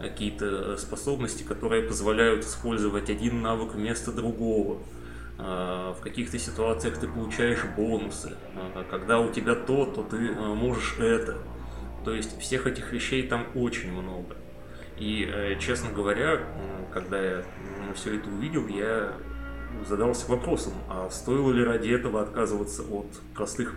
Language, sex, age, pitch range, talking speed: Russian, male, 20-39, 90-125 Hz, 125 wpm